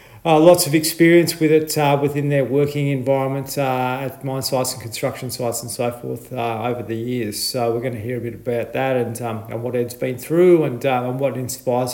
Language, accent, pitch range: English, Australian, 120-140 Hz